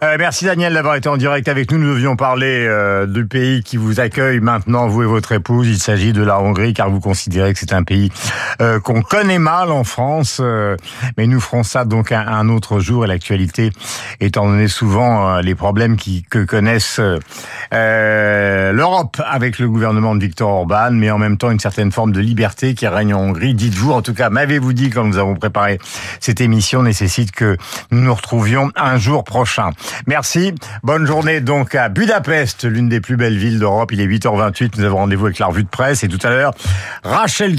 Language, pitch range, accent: French, 105-130 Hz, French